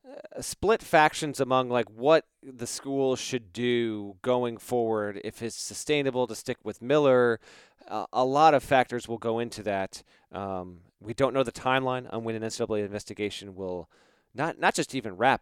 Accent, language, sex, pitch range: American, English, male, 115-140 Hz